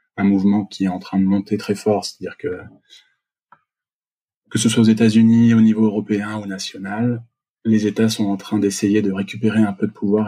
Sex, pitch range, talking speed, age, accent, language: male, 100-110 Hz, 200 wpm, 20-39, French, French